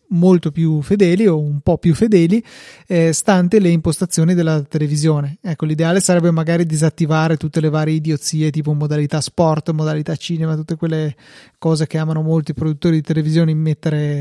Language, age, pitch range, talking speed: Italian, 30-49, 155-185 Hz, 165 wpm